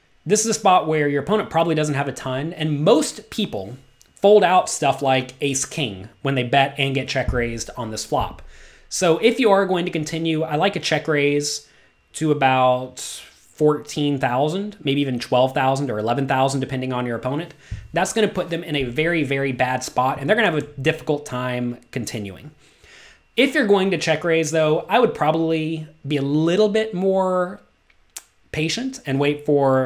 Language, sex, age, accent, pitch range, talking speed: English, male, 30-49, American, 125-160 Hz, 180 wpm